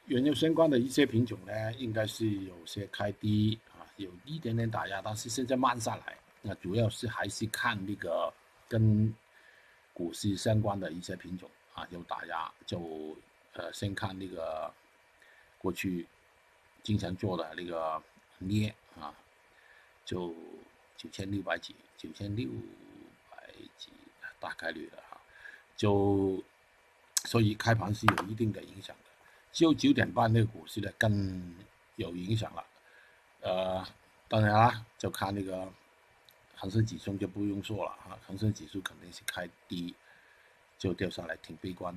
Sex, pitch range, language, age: male, 90-110 Hz, Chinese, 50-69